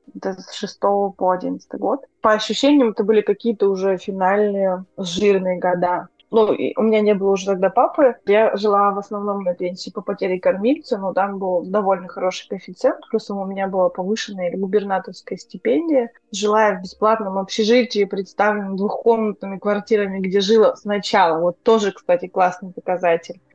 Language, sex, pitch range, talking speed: Russian, female, 190-230 Hz, 155 wpm